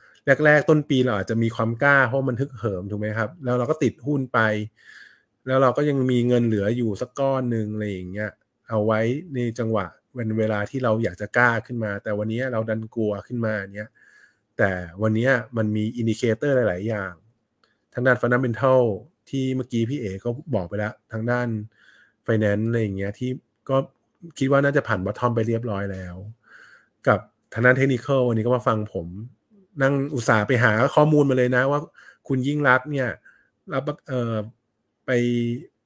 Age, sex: 20-39, male